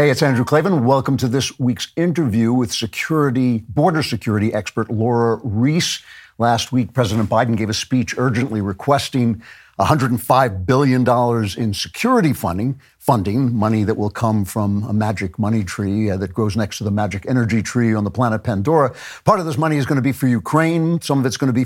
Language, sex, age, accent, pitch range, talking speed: English, male, 60-79, American, 110-135 Hz, 190 wpm